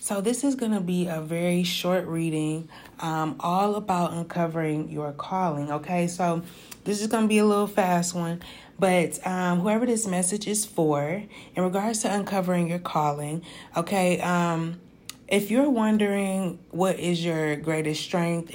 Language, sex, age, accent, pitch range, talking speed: English, female, 30-49, American, 155-190 Hz, 155 wpm